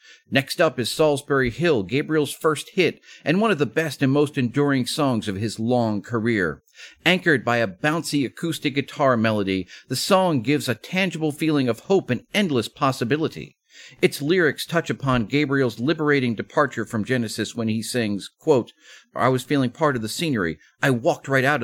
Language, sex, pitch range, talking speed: English, male, 120-165 Hz, 175 wpm